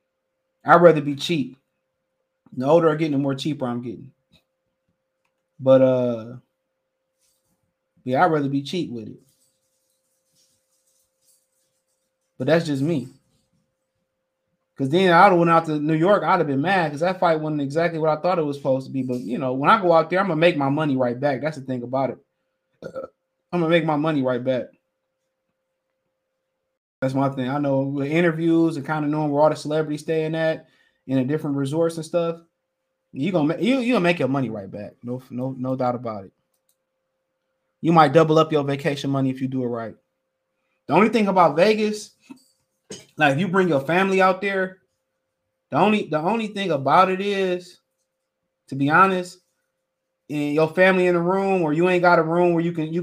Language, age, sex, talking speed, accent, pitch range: English, 20-39, male, 195 wpm, American, 135-175 Hz